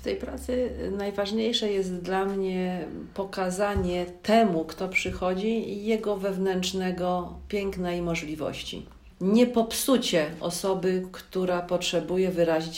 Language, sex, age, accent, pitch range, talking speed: Polish, female, 40-59, native, 155-195 Hz, 110 wpm